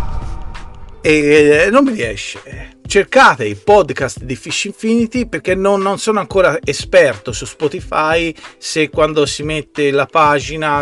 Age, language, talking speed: 40-59, Italian, 135 wpm